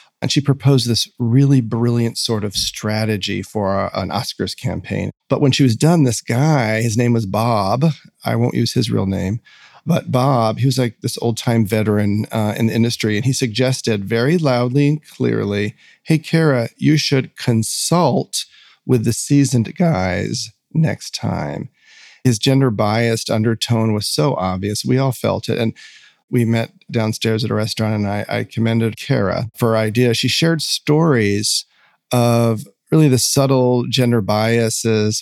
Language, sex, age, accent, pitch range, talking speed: English, male, 40-59, American, 110-130 Hz, 160 wpm